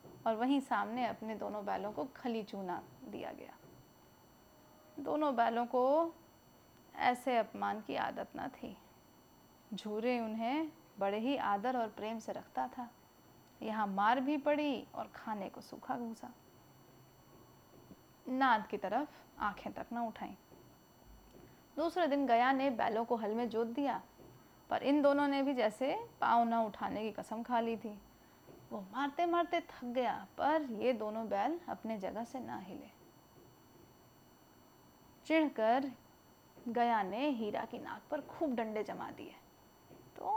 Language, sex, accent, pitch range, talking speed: Hindi, female, native, 220-275 Hz, 145 wpm